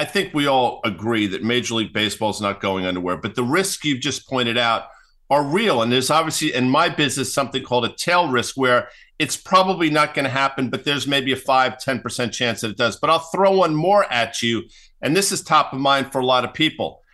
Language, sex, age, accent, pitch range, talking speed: English, male, 50-69, American, 120-160 Hz, 235 wpm